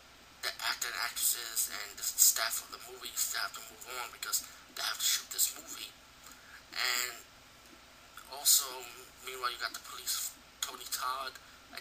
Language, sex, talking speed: English, male, 165 wpm